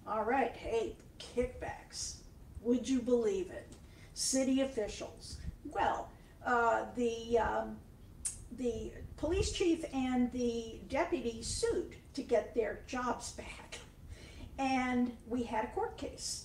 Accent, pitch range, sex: American, 220-305 Hz, female